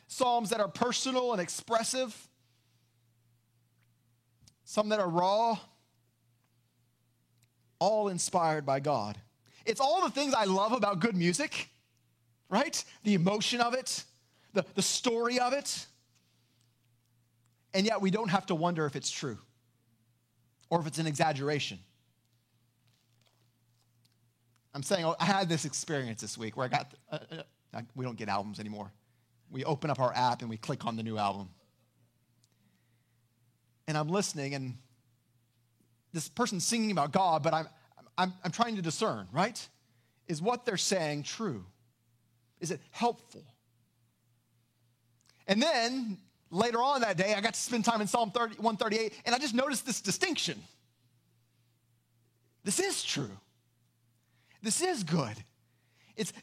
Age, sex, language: 30-49, male, English